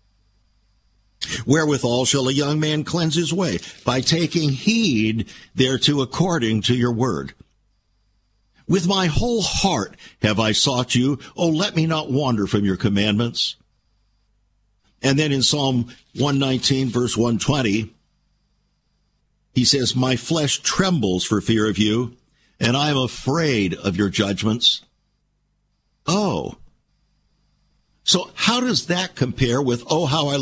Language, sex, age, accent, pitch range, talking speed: English, male, 50-69, American, 110-150 Hz, 130 wpm